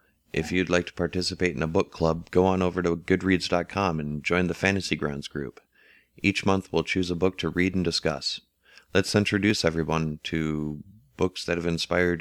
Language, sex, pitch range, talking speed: English, male, 80-95 Hz, 185 wpm